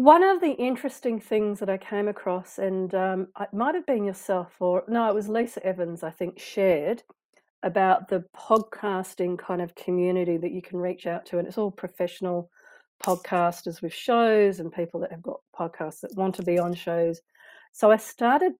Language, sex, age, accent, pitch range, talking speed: English, female, 40-59, Australian, 175-210 Hz, 190 wpm